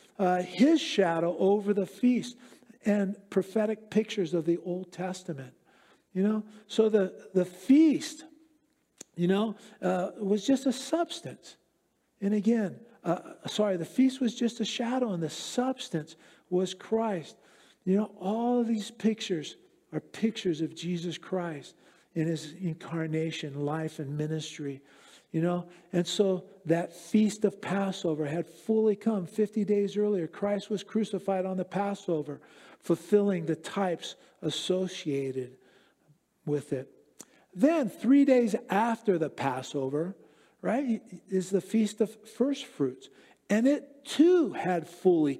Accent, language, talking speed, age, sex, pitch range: American, English, 135 wpm, 50-69, male, 170-225 Hz